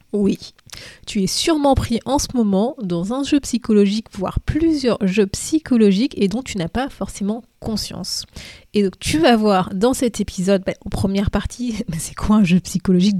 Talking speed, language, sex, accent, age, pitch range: 185 wpm, French, female, French, 30-49, 190-240 Hz